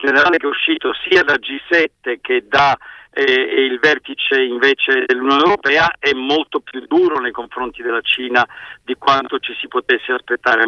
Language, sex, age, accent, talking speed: Italian, male, 50-69, native, 170 wpm